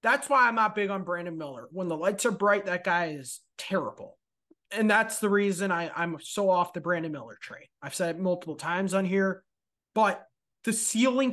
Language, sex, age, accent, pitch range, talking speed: English, male, 20-39, American, 175-215 Hz, 205 wpm